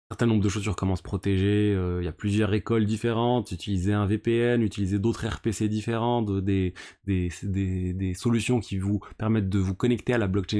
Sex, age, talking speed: male, 20-39, 215 wpm